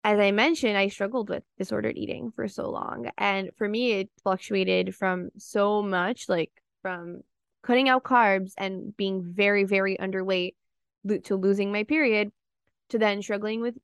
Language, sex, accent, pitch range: English, female, American, 190-230 Hz